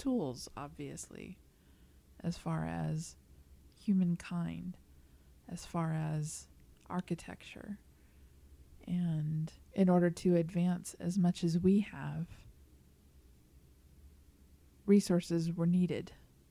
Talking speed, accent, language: 85 wpm, American, English